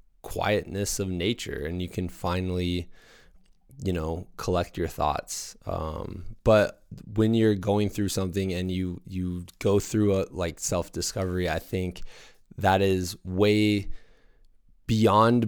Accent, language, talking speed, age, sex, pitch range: American, English, 130 wpm, 20-39, male, 85-100 Hz